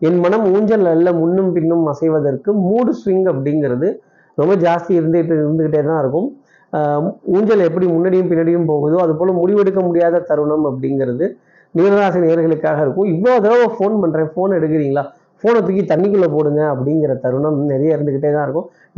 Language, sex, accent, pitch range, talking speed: Tamil, male, native, 150-185 Hz, 145 wpm